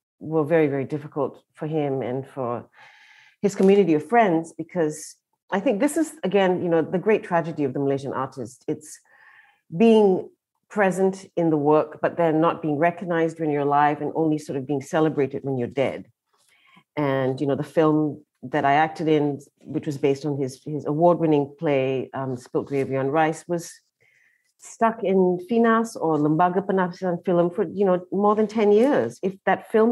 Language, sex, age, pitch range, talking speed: English, female, 40-59, 150-195 Hz, 180 wpm